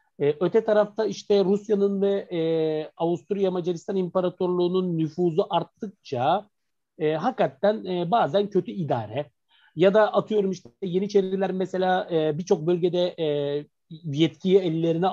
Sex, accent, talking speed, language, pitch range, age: male, native, 115 wpm, Turkish, 150-215 Hz, 50-69